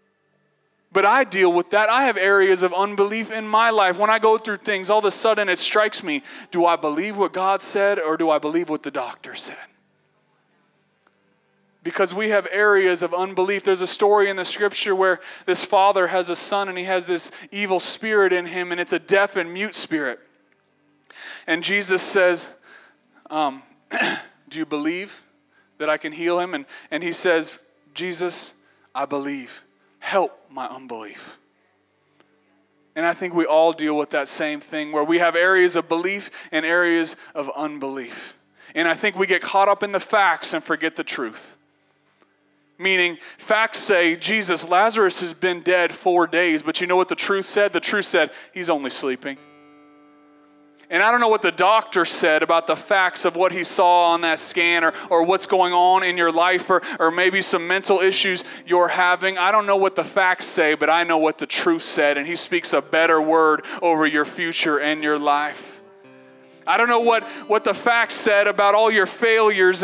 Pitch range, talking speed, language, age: 160-200 Hz, 190 wpm, English, 20-39